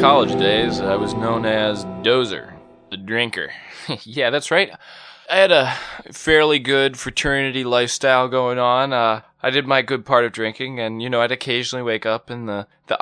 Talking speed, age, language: 180 wpm, 20-39, English